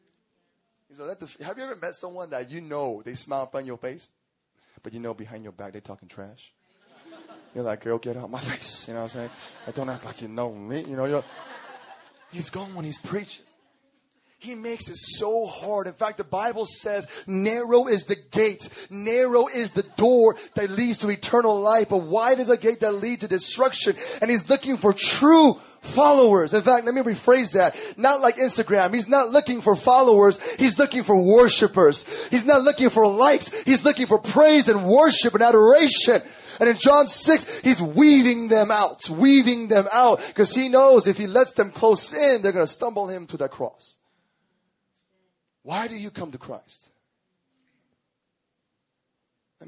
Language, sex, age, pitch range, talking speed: English, male, 20-39, 175-250 Hz, 190 wpm